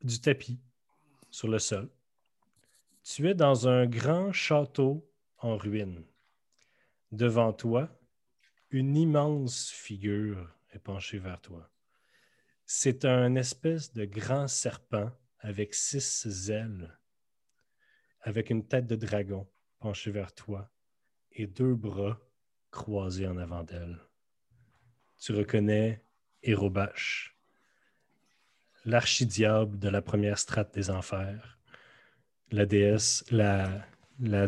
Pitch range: 100-125 Hz